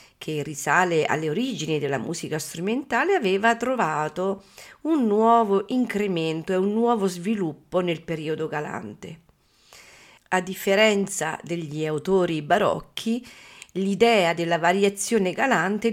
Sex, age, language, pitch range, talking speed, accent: female, 40-59, Italian, 170-230 Hz, 105 wpm, native